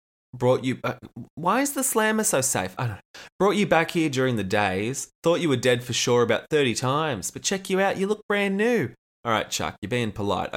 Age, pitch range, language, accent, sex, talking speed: 20-39, 110-165 Hz, English, Australian, male, 240 wpm